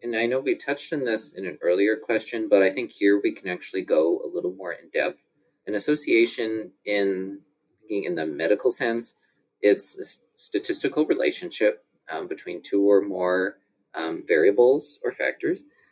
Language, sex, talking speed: English, male, 165 wpm